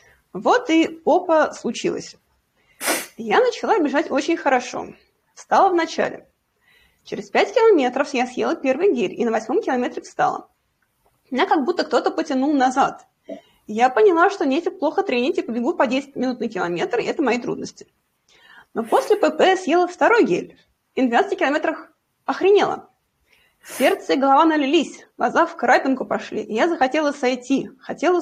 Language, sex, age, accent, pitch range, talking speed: Russian, female, 20-39, native, 260-375 Hz, 150 wpm